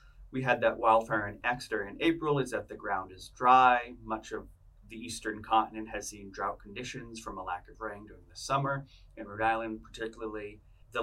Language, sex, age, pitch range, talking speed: English, male, 30-49, 100-125 Hz, 195 wpm